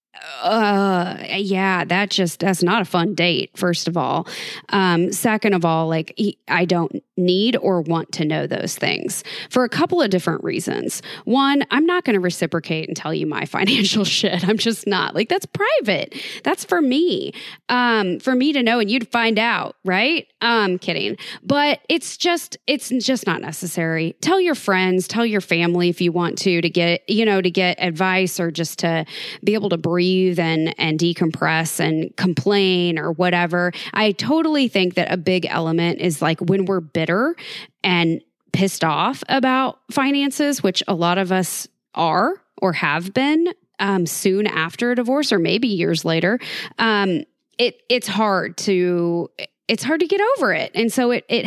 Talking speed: 180 wpm